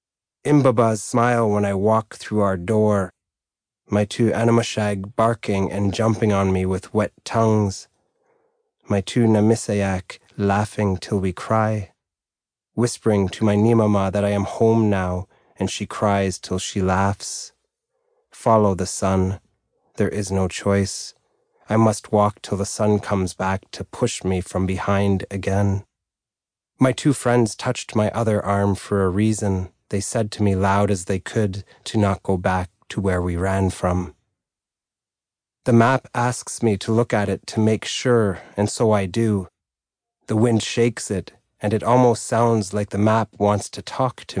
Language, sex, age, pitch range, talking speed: English, male, 30-49, 95-110 Hz, 160 wpm